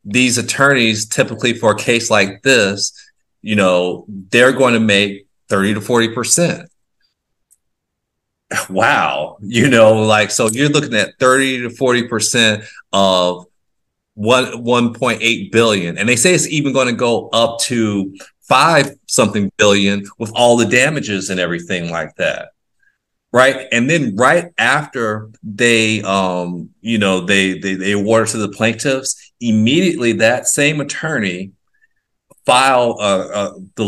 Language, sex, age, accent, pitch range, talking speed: English, male, 30-49, American, 100-120 Hz, 145 wpm